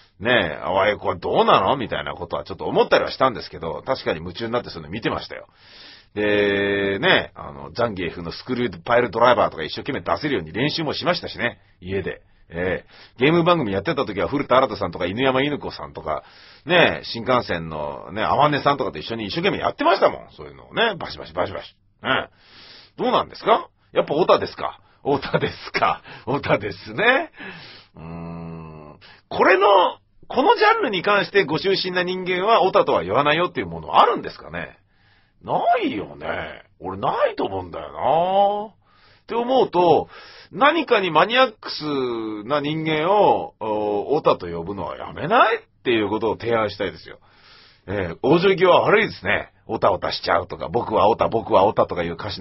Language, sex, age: Japanese, male, 40-59